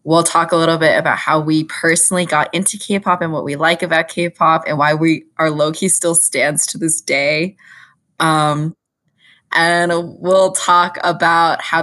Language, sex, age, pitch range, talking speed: English, female, 20-39, 155-175 Hz, 170 wpm